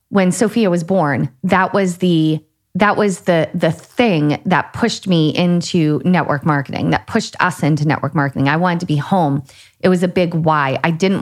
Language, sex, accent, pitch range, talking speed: English, female, American, 150-180 Hz, 175 wpm